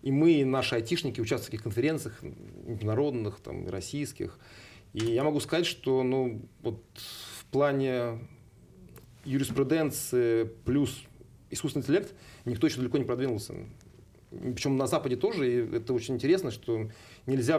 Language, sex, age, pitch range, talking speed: Russian, male, 30-49, 115-135 Hz, 135 wpm